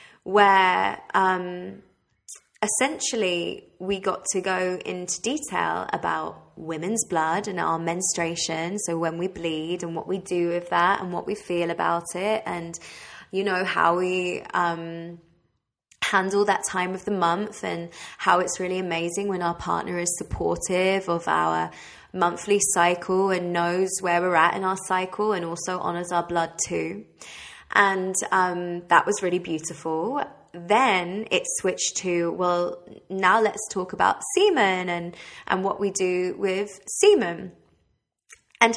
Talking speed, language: 145 wpm, English